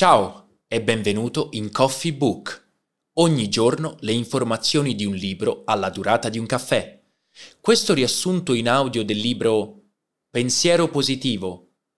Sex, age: male, 20-39